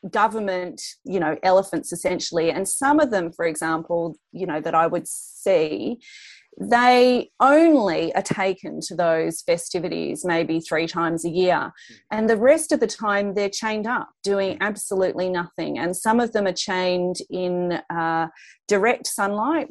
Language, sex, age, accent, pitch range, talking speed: English, female, 30-49, Australian, 175-215 Hz, 155 wpm